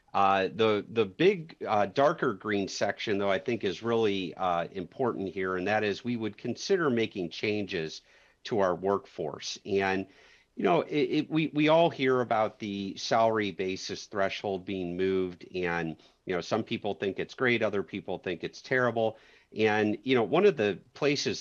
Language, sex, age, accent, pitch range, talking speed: English, male, 50-69, American, 95-120 Hz, 175 wpm